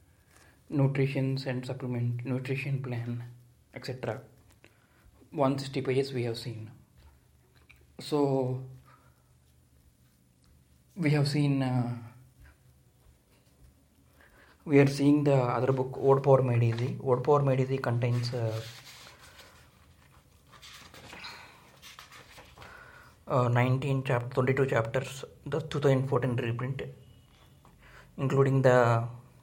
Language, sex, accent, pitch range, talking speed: Telugu, male, native, 120-135 Hz, 90 wpm